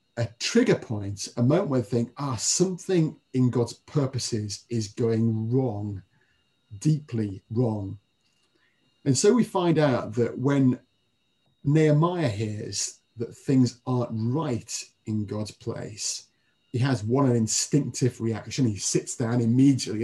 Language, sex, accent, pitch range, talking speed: English, male, British, 110-140 Hz, 130 wpm